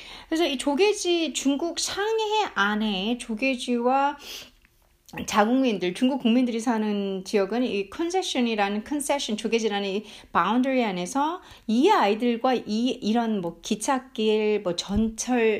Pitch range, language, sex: 210-290 Hz, Korean, female